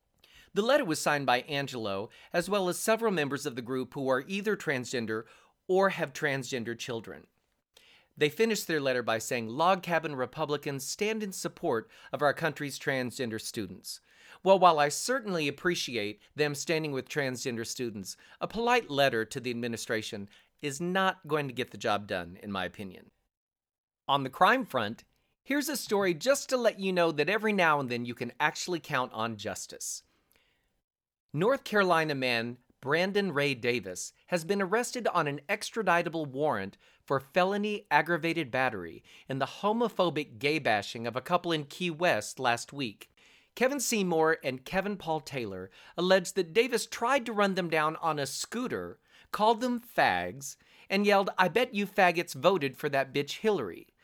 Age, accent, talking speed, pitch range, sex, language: 40-59, American, 165 wpm, 130-190 Hz, male, English